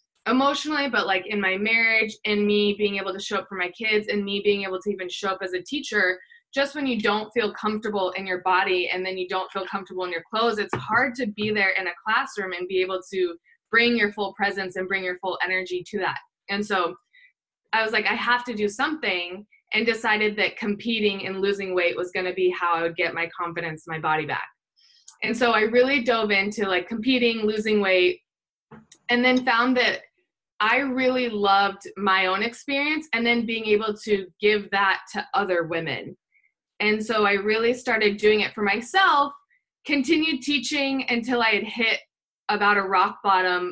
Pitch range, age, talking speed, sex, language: 190-230 Hz, 20-39, 200 wpm, female, English